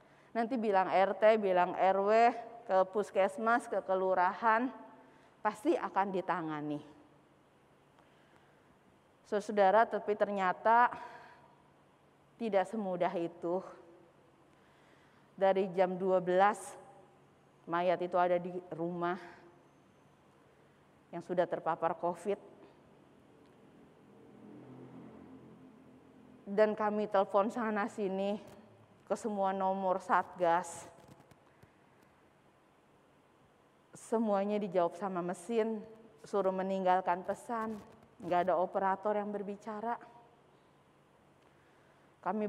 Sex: female